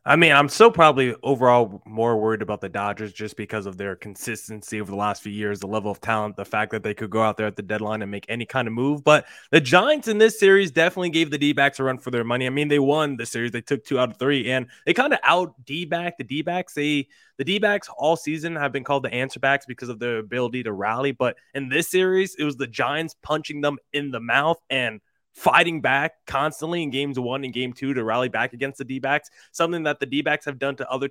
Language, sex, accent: English, male, American